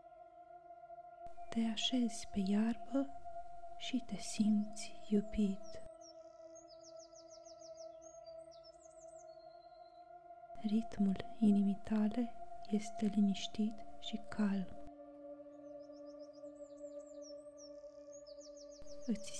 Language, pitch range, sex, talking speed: Romanian, 220-325 Hz, female, 50 wpm